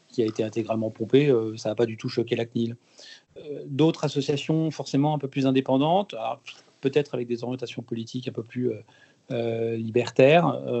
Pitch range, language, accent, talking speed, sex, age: 120-140 Hz, French, French, 160 wpm, male, 40-59